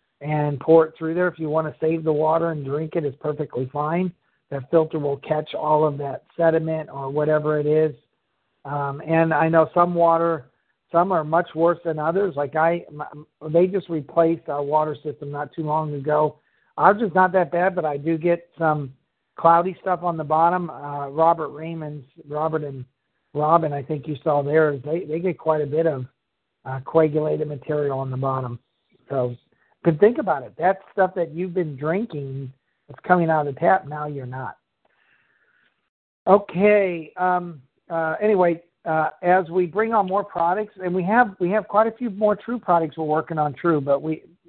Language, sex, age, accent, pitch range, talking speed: English, male, 50-69, American, 150-175 Hz, 190 wpm